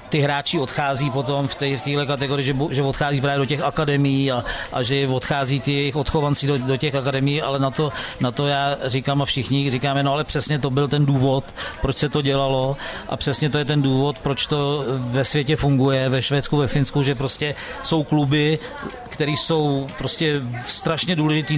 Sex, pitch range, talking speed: male, 135-150 Hz, 195 wpm